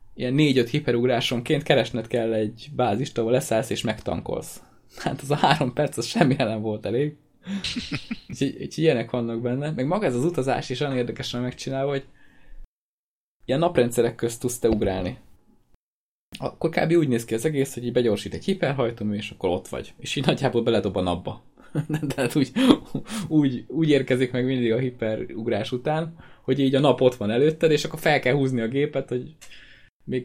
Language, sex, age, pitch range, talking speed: Hungarian, male, 20-39, 115-140 Hz, 180 wpm